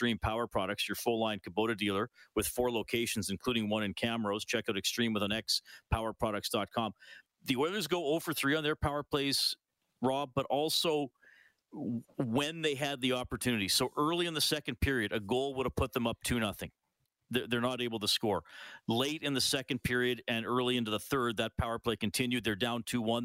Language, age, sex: English, 40-59, male